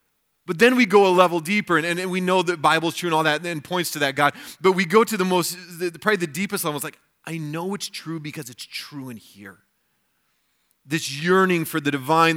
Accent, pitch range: American, 135-170 Hz